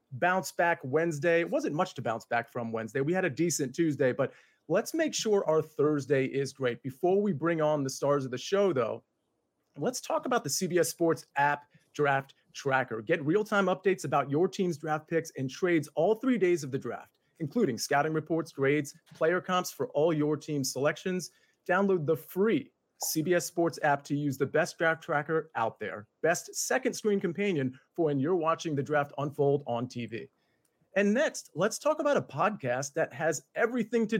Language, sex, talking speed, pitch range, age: English, male, 190 wpm, 145-190 Hz, 40-59